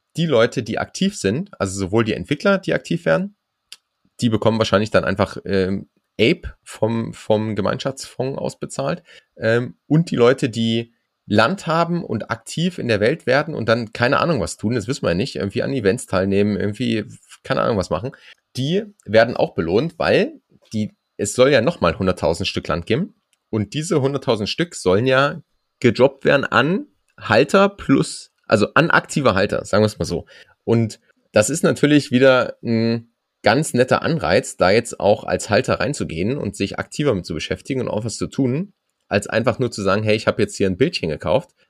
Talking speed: 185 wpm